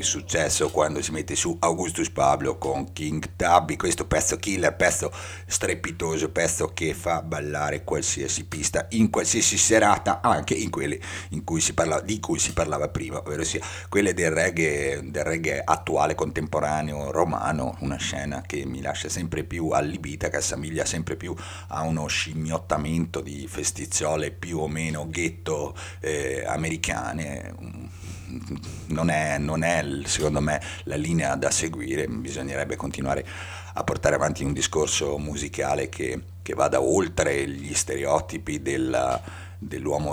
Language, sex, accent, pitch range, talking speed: Italian, male, native, 75-90 Hz, 140 wpm